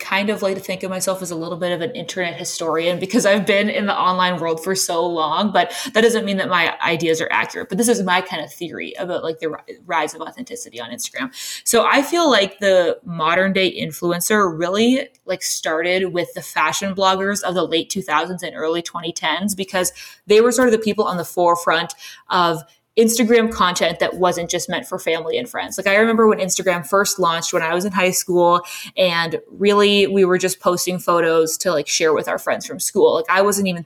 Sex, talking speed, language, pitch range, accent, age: female, 220 wpm, English, 165-200 Hz, American, 20-39